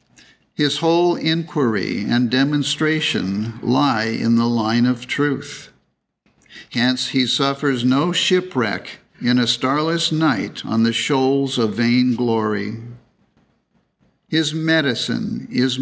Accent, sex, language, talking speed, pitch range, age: American, male, English, 110 wpm, 120-145 Hz, 60-79